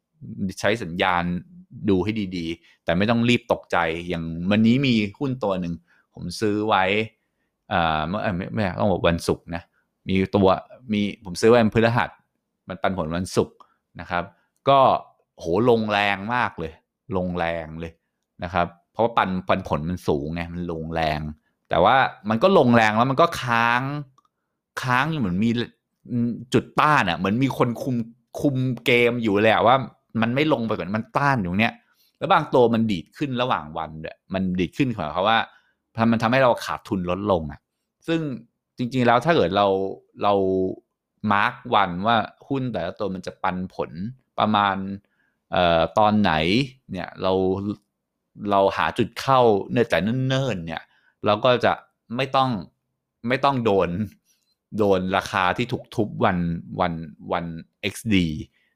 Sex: male